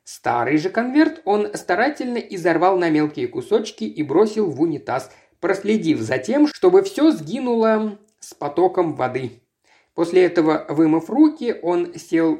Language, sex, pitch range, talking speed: Russian, male, 155-225 Hz, 135 wpm